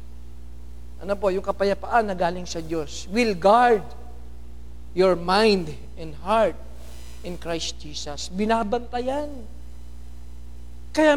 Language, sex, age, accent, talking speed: Filipino, male, 50-69, native, 100 wpm